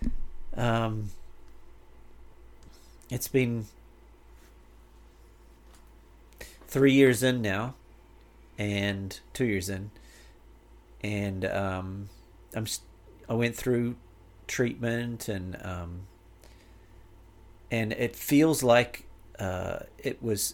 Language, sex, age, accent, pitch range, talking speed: English, male, 40-59, American, 90-120 Hz, 80 wpm